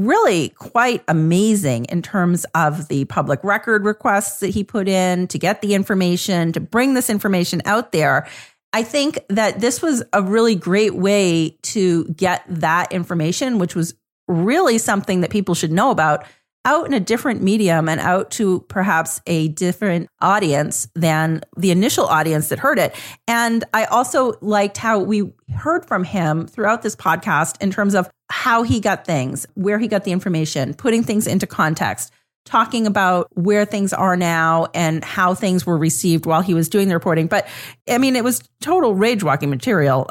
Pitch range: 165-220 Hz